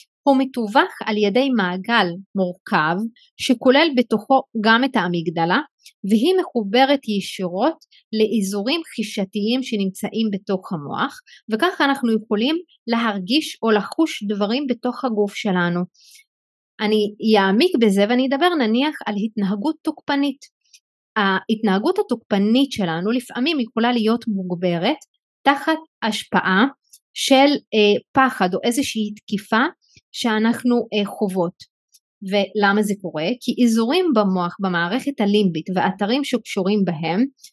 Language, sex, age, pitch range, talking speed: Hebrew, female, 30-49, 200-270 Hz, 105 wpm